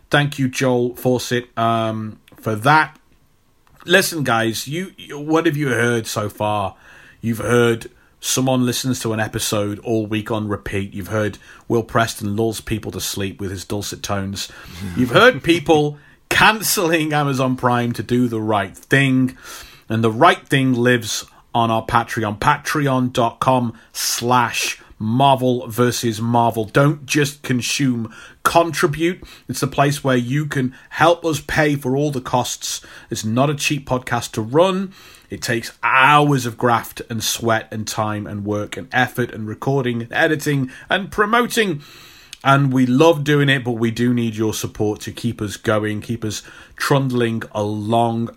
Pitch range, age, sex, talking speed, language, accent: 115-140 Hz, 30-49, male, 155 wpm, English, British